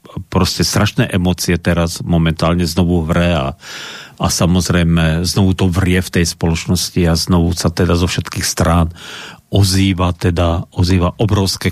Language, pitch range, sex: Slovak, 90-115 Hz, male